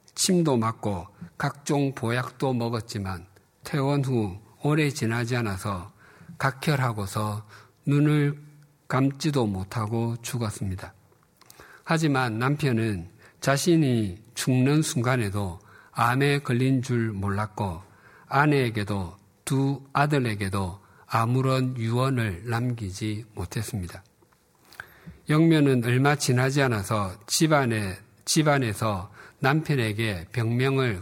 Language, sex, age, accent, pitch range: Korean, male, 50-69, native, 105-140 Hz